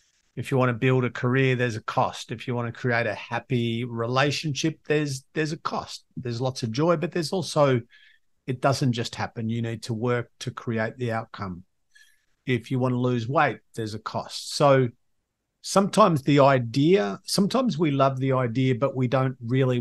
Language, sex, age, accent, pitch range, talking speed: English, male, 50-69, Australian, 115-135 Hz, 190 wpm